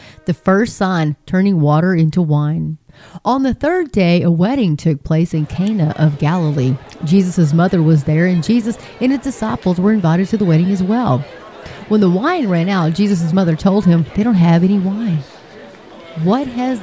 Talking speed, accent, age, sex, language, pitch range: 180 wpm, American, 30-49, female, English, 160-215 Hz